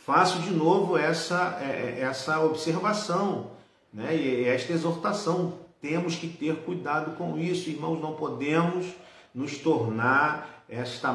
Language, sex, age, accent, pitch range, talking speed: Portuguese, male, 40-59, Brazilian, 125-170 Hz, 120 wpm